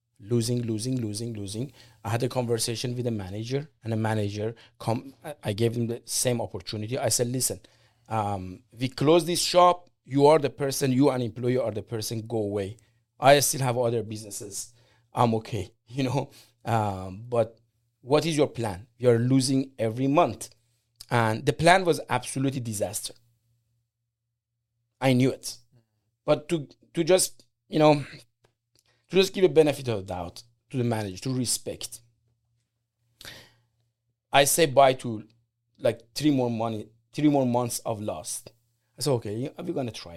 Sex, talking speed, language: male, 160 wpm, English